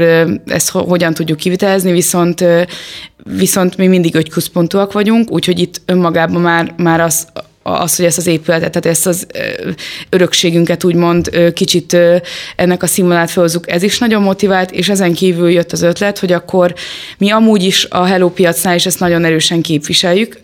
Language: Hungarian